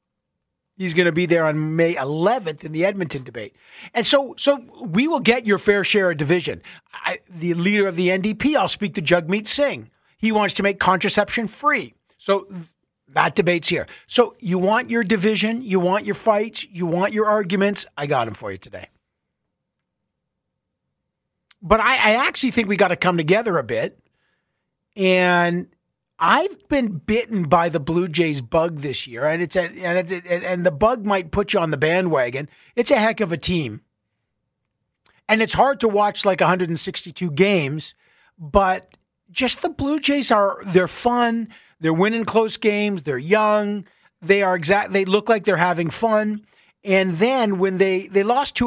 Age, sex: 50-69, male